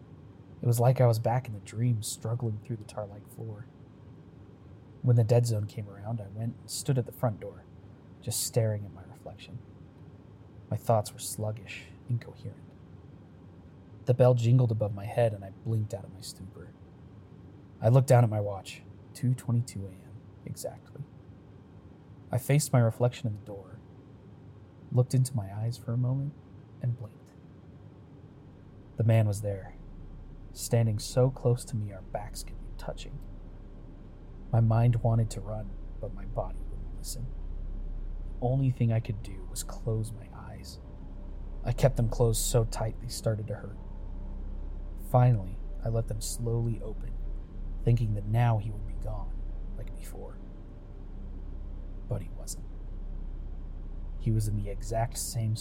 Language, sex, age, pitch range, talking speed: English, male, 30-49, 95-120 Hz, 155 wpm